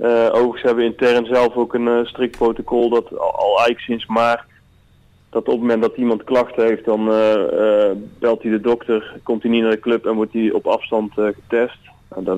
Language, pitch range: Dutch, 105-120 Hz